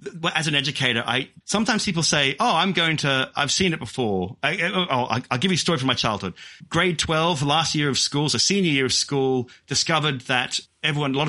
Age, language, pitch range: 30-49, English, 115-160 Hz